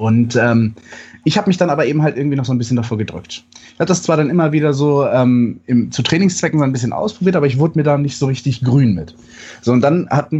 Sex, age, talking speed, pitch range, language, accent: male, 30-49, 265 wpm, 120-155 Hz, German, German